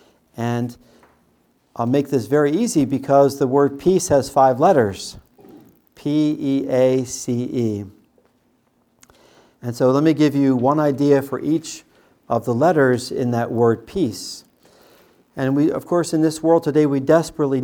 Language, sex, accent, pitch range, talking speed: English, male, American, 125-150 Hz, 140 wpm